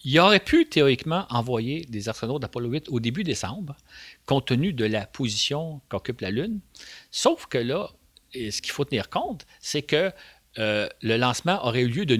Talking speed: 185 wpm